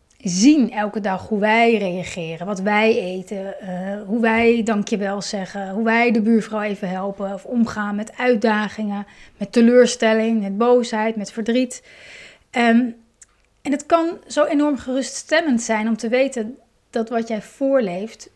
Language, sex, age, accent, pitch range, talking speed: Dutch, female, 30-49, Dutch, 215-260 Hz, 155 wpm